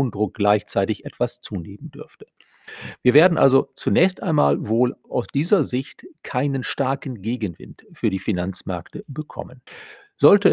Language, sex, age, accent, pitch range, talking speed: German, male, 40-59, German, 105-145 Hz, 125 wpm